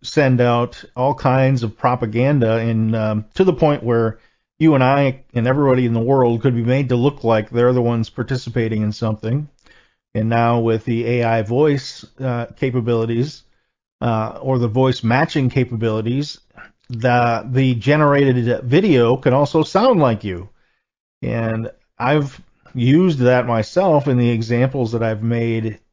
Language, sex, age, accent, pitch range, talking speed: English, male, 40-59, American, 115-135 Hz, 155 wpm